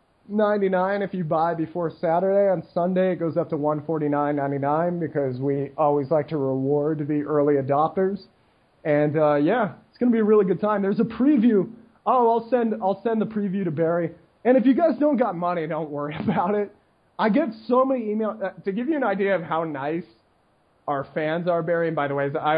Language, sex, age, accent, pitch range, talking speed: English, male, 30-49, American, 145-195 Hz, 210 wpm